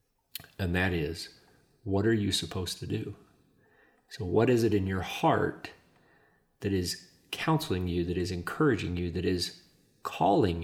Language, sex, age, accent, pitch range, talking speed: English, male, 40-59, American, 90-110 Hz, 150 wpm